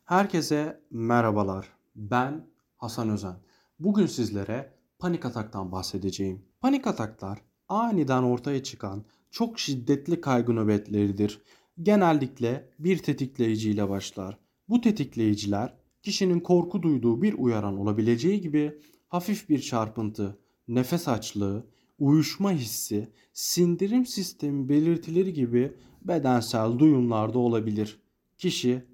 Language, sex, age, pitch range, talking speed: Turkish, male, 40-59, 110-170 Hz, 100 wpm